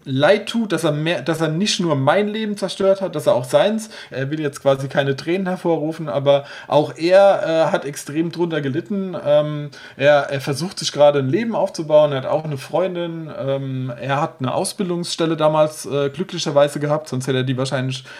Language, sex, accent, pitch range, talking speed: German, male, German, 140-165 Hz, 200 wpm